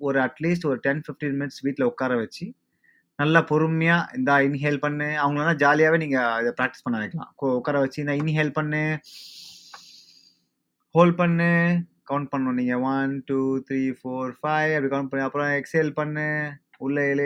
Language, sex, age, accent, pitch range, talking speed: Tamil, male, 20-39, native, 130-165 Hz, 40 wpm